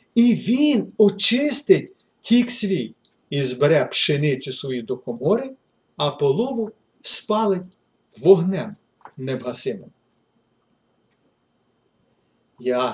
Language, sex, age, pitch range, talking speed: Ukrainian, male, 40-59, 140-205 Hz, 80 wpm